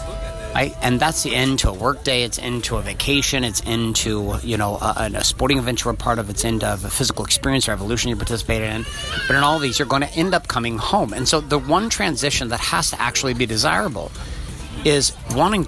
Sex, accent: male, American